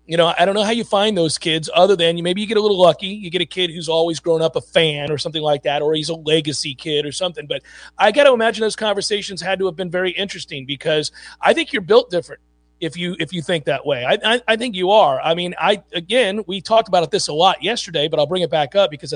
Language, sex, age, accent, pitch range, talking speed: English, male, 40-59, American, 160-195 Hz, 280 wpm